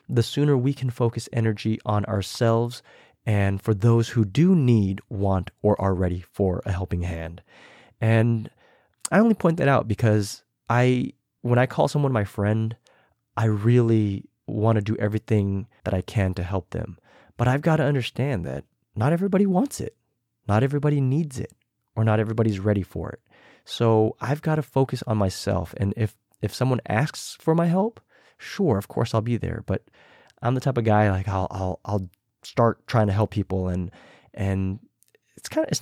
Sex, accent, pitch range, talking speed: male, American, 100-125 Hz, 185 wpm